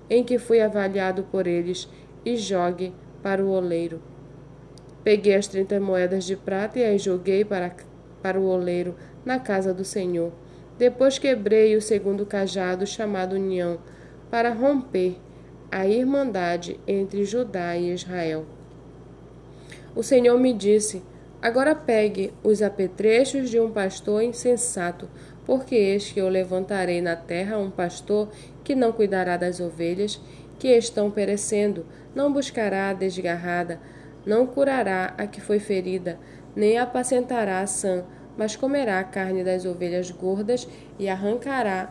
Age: 20-39